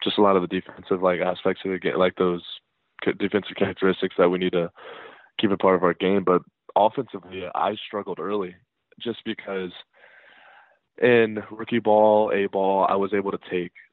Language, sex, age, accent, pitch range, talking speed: English, male, 20-39, American, 90-100 Hz, 185 wpm